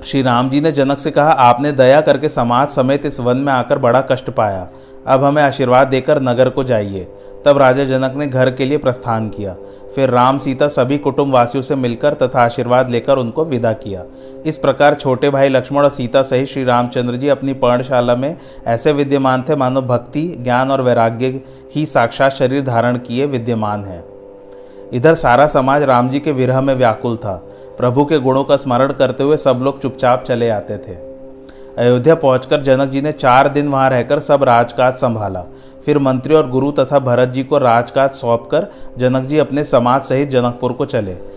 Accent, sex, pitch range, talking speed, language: native, male, 125-140 Hz, 190 wpm, Hindi